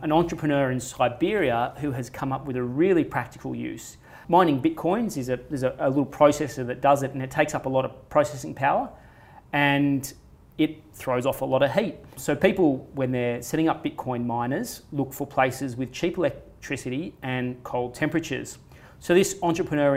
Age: 30-49